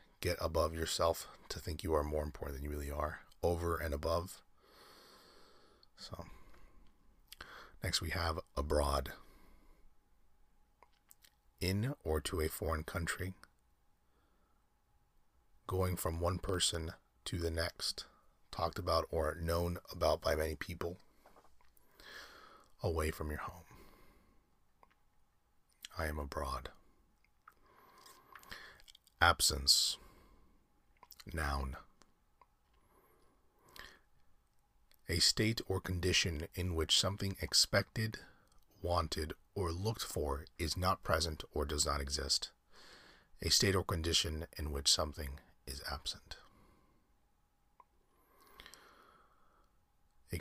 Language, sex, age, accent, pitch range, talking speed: English, male, 30-49, American, 75-90 Hz, 95 wpm